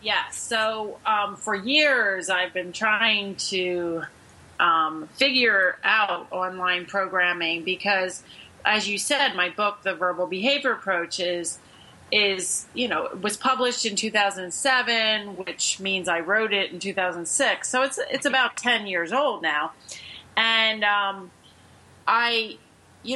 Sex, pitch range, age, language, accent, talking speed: female, 175-220 Hz, 30-49, English, American, 150 wpm